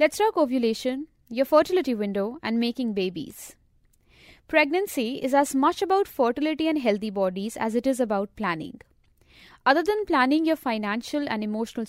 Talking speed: 150 wpm